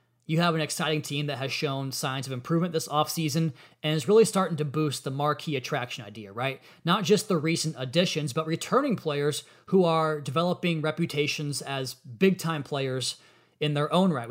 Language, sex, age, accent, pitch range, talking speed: English, male, 30-49, American, 130-160 Hz, 180 wpm